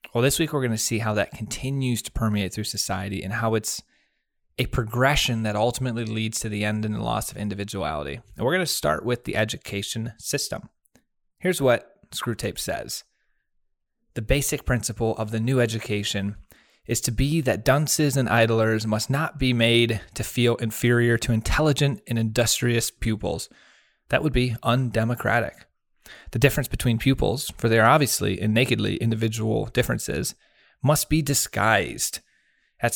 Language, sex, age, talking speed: English, male, 30-49, 160 wpm